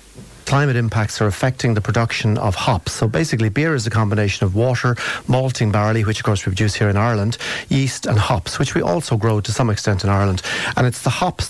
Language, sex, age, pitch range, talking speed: English, male, 40-59, 105-130 Hz, 220 wpm